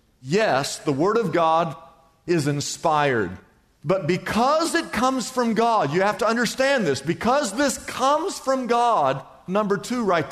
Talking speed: 150 wpm